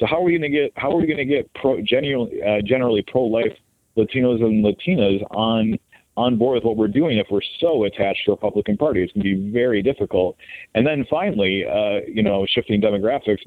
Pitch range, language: 100-125 Hz, English